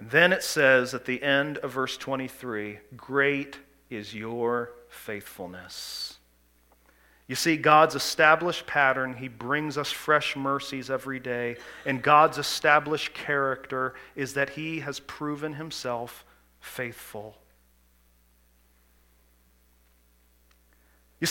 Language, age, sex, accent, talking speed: English, 40-59, male, American, 105 wpm